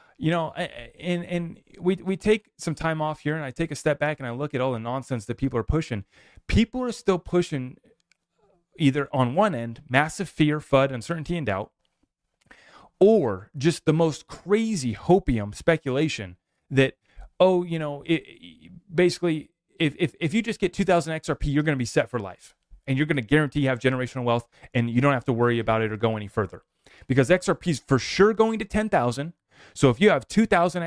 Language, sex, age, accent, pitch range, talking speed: English, male, 30-49, American, 125-170 Hz, 205 wpm